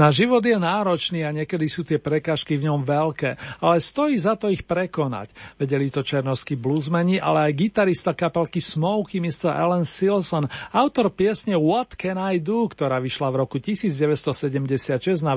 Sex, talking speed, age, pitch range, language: male, 165 wpm, 40-59, 150-185 Hz, Slovak